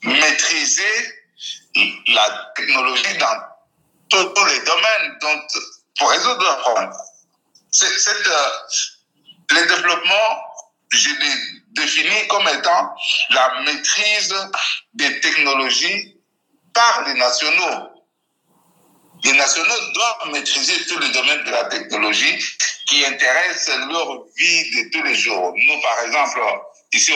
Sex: male